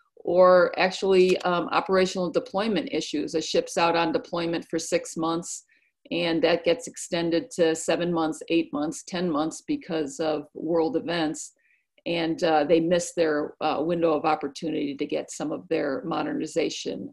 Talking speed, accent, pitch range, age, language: 155 wpm, American, 155-180 Hz, 50-69, English